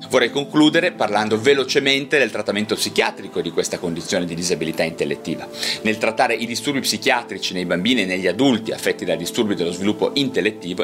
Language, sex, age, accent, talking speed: Italian, male, 30-49, native, 160 wpm